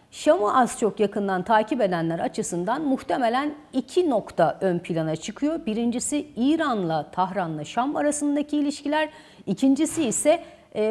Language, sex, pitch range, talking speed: Turkish, female, 200-280 Hz, 120 wpm